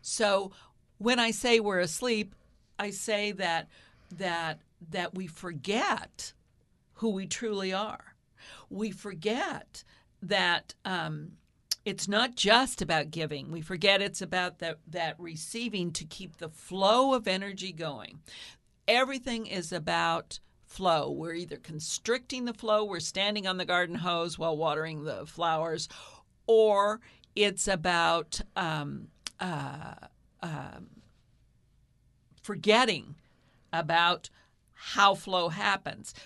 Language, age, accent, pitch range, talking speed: English, 50-69, American, 160-205 Hz, 115 wpm